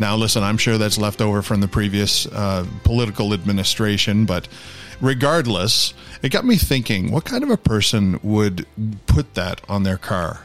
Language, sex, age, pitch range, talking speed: English, male, 40-59, 105-130 Hz, 170 wpm